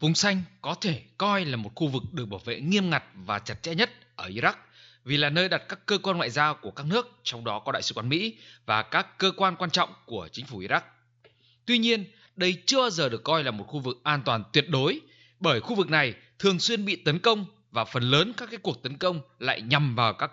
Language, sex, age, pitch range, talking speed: Vietnamese, male, 20-39, 125-190 Hz, 255 wpm